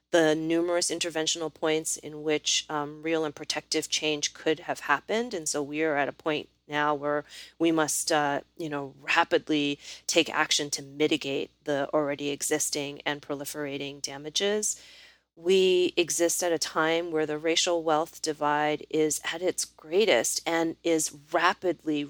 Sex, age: female, 30-49